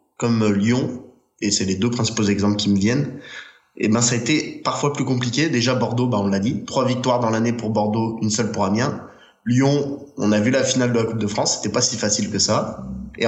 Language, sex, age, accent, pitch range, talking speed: French, male, 20-39, French, 105-130 Hz, 240 wpm